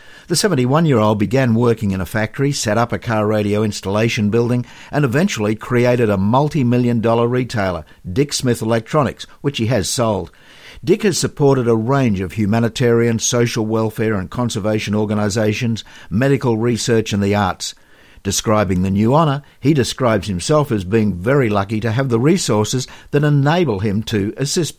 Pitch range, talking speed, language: 105-135 Hz, 155 wpm, English